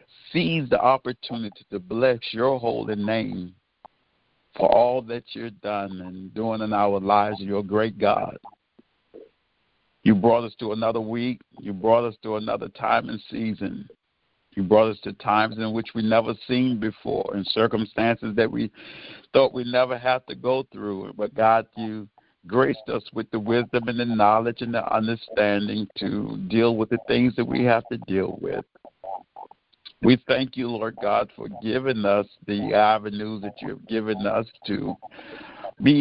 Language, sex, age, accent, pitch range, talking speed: English, male, 50-69, American, 105-120 Hz, 165 wpm